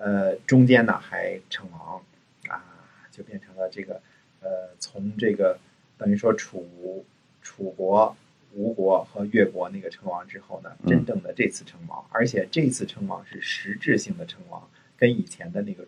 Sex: male